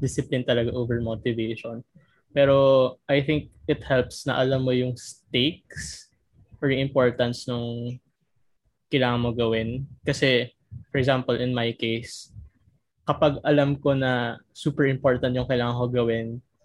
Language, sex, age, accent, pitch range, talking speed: Filipino, male, 20-39, native, 120-135 Hz, 135 wpm